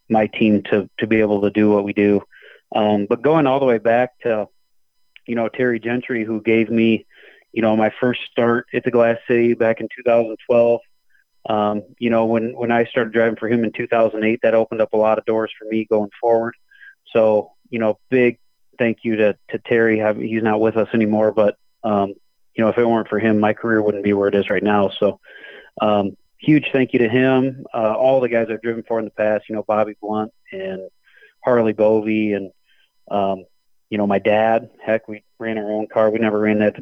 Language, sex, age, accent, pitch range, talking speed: English, male, 30-49, American, 105-115 Hz, 220 wpm